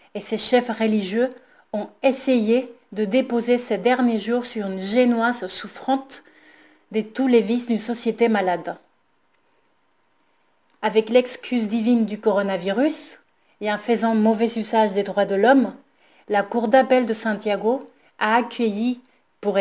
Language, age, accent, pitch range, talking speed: French, 30-49, French, 210-250 Hz, 135 wpm